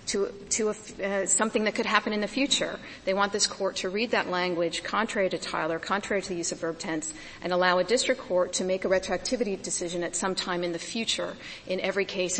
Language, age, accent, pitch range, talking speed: English, 40-59, American, 180-215 Hz, 230 wpm